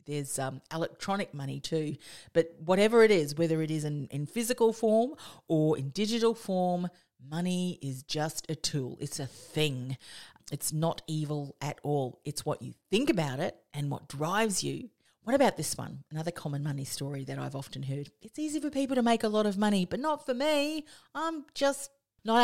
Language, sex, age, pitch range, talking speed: English, female, 40-59, 145-200 Hz, 195 wpm